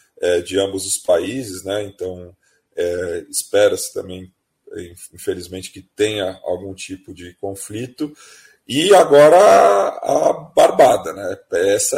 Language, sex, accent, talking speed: Portuguese, male, Brazilian, 110 wpm